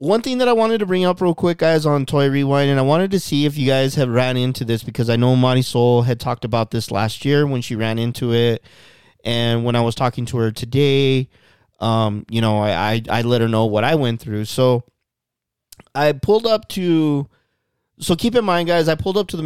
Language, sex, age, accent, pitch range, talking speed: English, male, 20-39, American, 115-150 Hz, 245 wpm